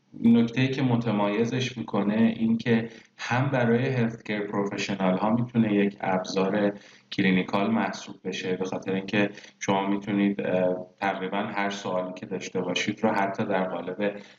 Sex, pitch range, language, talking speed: male, 95-115 Hz, Persian, 135 wpm